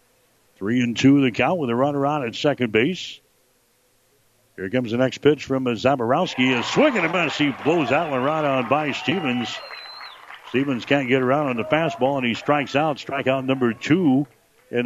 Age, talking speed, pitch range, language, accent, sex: 60-79, 195 wpm, 120-140 Hz, English, American, male